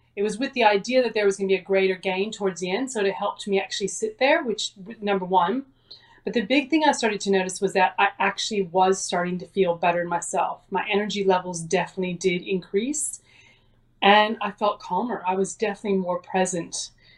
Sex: female